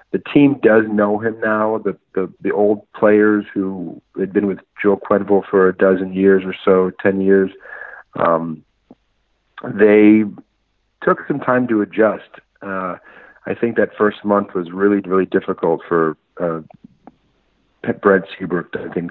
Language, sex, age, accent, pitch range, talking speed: German, male, 40-59, American, 90-105 Hz, 150 wpm